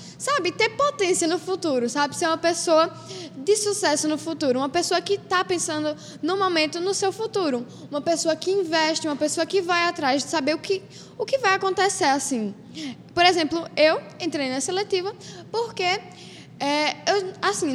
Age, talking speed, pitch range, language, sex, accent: 10-29, 160 wpm, 285-375 Hz, Portuguese, female, Brazilian